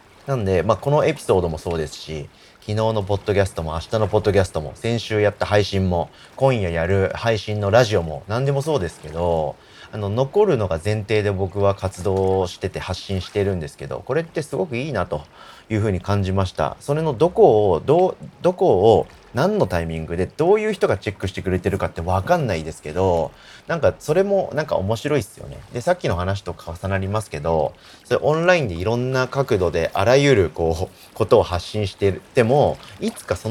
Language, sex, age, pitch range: Japanese, male, 40-59, 85-115 Hz